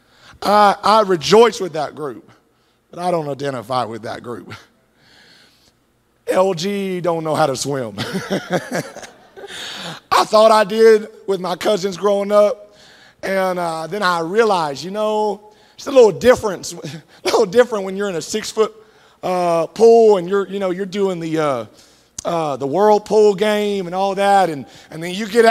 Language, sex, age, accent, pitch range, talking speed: English, male, 40-59, American, 175-210 Hz, 160 wpm